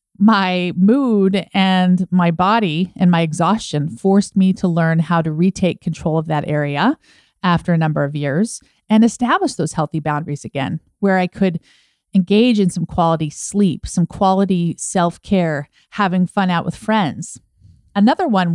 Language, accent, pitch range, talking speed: English, American, 165-210 Hz, 155 wpm